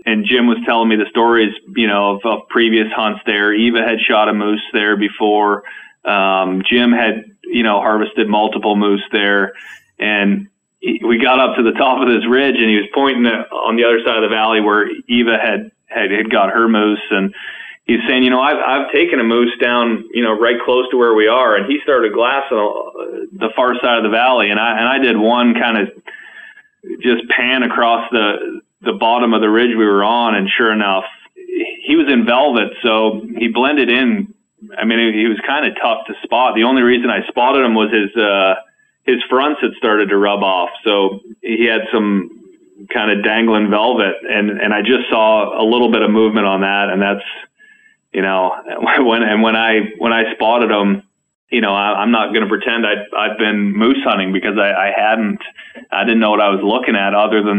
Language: English